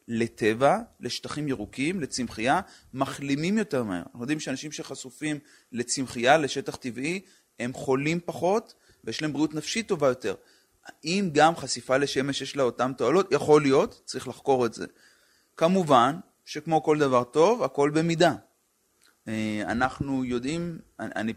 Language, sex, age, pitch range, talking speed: Hebrew, male, 30-49, 120-155 Hz, 130 wpm